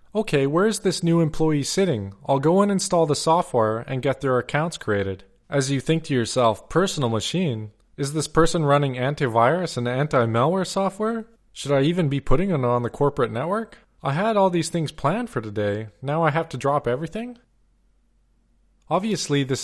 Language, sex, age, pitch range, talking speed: English, male, 20-39, 120-155 Hz, 180 wpm